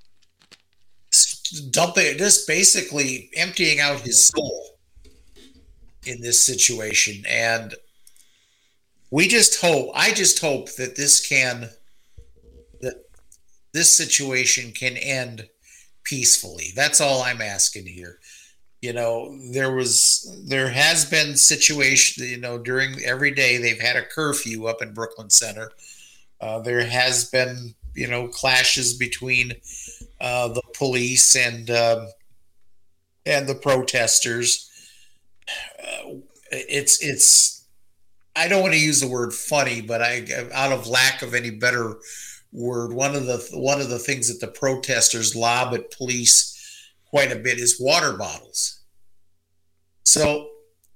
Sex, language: male, English